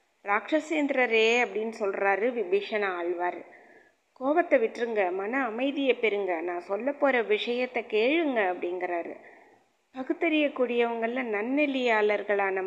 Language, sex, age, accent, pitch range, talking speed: Tamil, female, 20-39, native, 200-255 Hz, 85 wpm